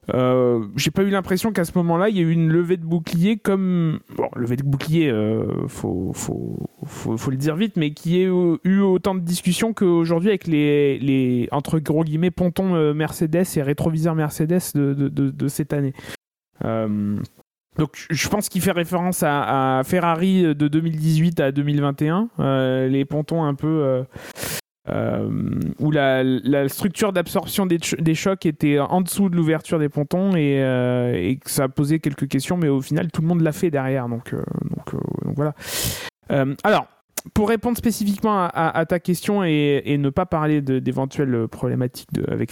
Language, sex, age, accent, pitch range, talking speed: French, male, 20-39, French, 140-180 Hz, 190 wpm